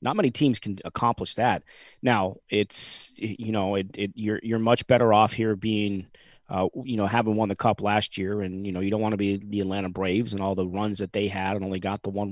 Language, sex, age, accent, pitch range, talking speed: English, male, 30-49, American, 100-115 Hz, 250 wpm